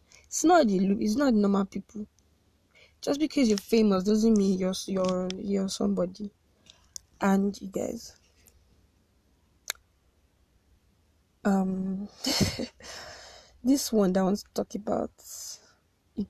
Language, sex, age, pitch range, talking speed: English, female, 20-39, 185-225 Hz, 115 wpm